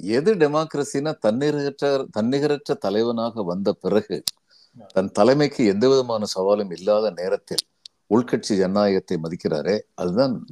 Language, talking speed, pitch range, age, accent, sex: Tamil, 105 wpm, 105-140 Hz, 50-69, native, male